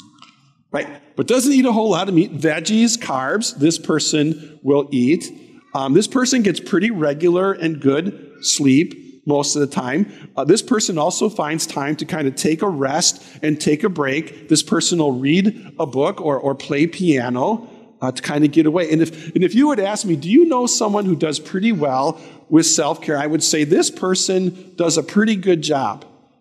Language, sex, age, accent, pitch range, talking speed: English, male, 50-69, American, 150-235 Hz, 200 wpm